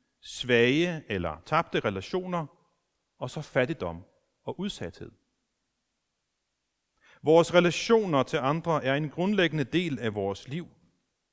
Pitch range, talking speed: 135-190 Hz, 105 wpm